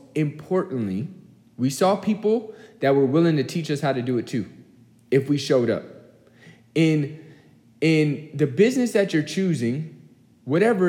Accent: American